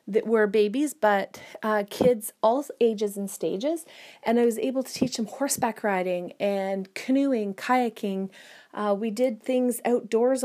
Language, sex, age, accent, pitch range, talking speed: English, female, 30-49, American, 210-255 Hz, 155 wpm